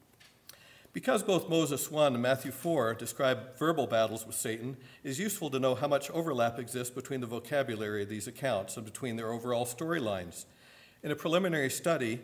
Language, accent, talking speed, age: English, American, 170 wpm, 50-69